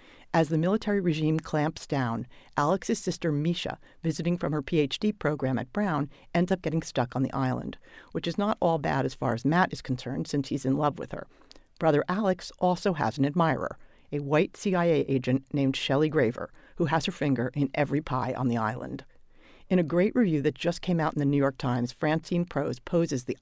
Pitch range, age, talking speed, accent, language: 140-175 Hz, 50-69, 205 wpm, American, English